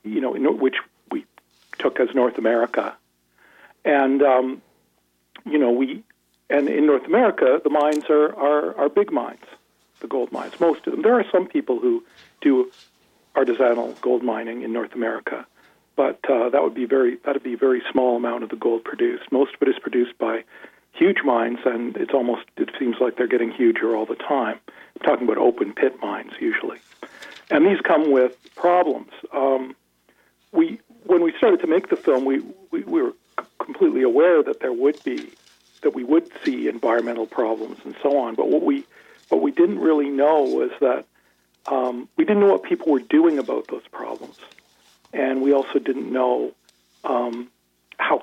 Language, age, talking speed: English, 50-69, 185 wpm